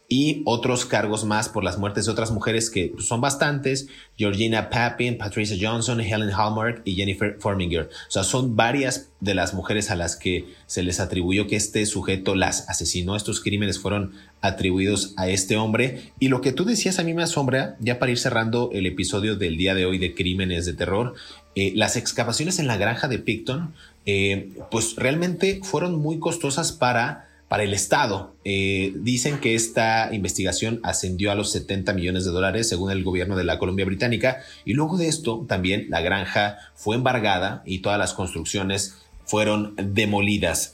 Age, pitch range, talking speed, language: 30-49, 95-120 Hz, 180 wpm, Spanish